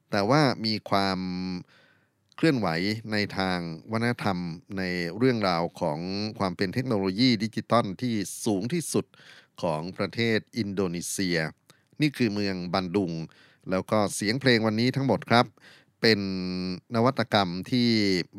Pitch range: 90-115 Hz